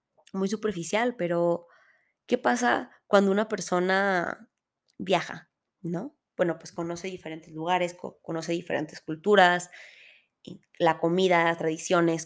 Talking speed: 110 wpm